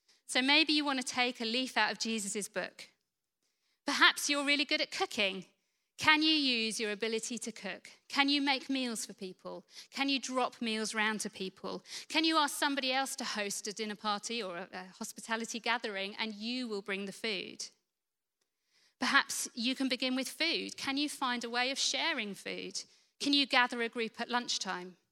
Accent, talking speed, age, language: British, 190 wpm, 40-59, English